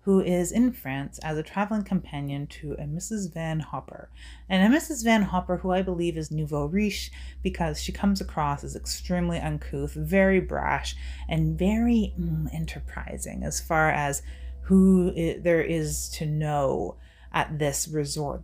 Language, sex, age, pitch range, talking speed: English, female, 30-49, 145-180 Hz, 155 wpm